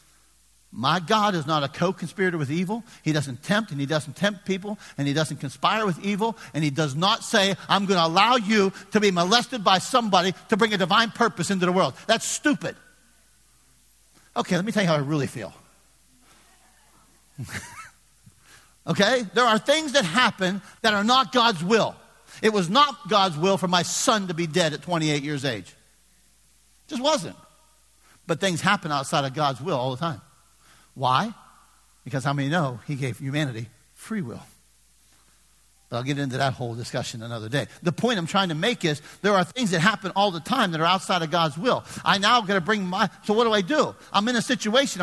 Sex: male